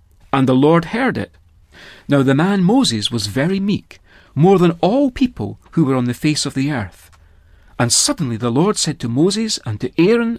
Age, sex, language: 40-59, male, English